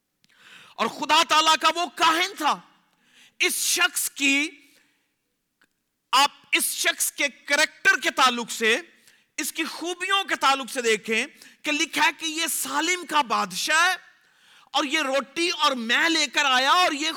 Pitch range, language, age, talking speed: 275-340 Hz, Urdu, 40-59, 150 wpm